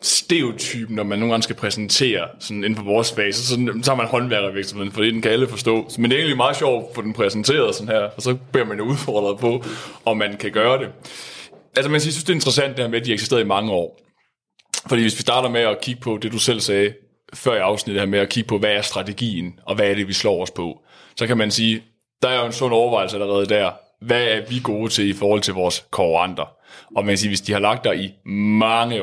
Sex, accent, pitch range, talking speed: male, native, 100-120 Hz, 255 wpm